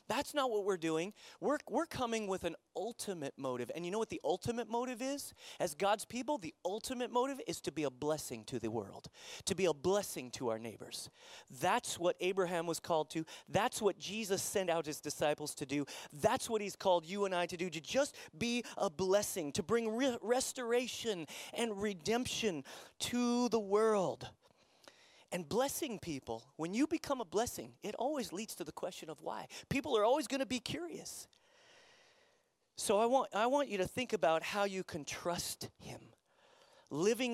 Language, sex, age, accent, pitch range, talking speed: English, male, 30-49, American, 155-240 Hz, 185 wpm